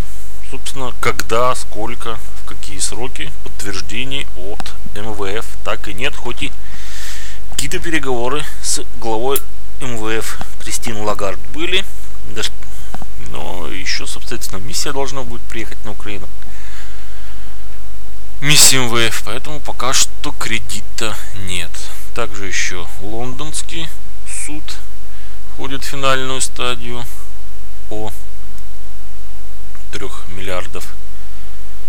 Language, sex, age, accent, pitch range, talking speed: Russian, male, 20-39, native, 75-115 Hz, 90 wpm